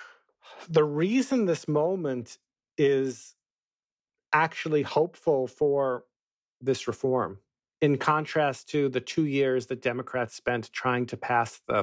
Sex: male